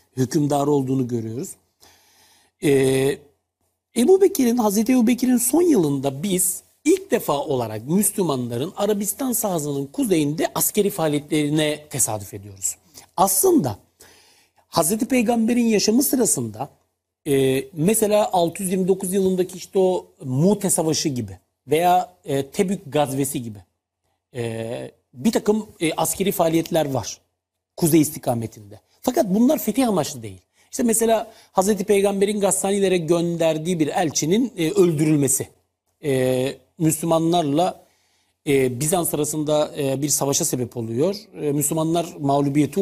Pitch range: 130-195 Hz